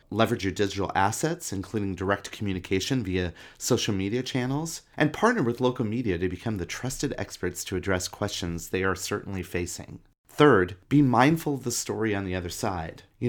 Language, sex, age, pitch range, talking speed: English, male, 30-49, 90-125 Hz, 175 wpm